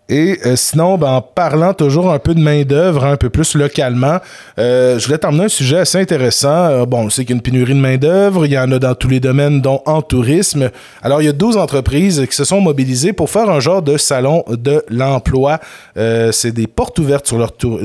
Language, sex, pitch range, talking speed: French, male, 125-160 Hz, 235 wpm